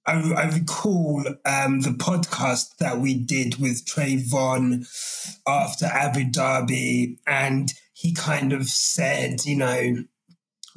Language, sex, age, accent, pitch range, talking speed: English, male, 20-39, British, 145-195 Hz, 125 wpm